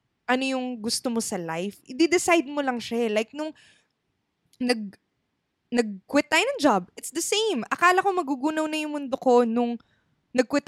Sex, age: female, 20-39